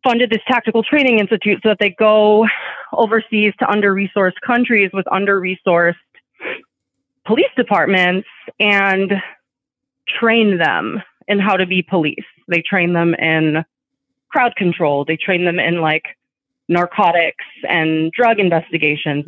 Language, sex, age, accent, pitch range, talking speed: English, female, 30-49, American, 170-230 Hz, 125 wpm